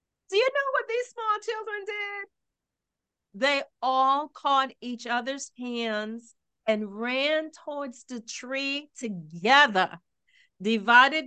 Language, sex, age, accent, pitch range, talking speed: English, female, 40-59, American, 220-285 Hz, 110 wpm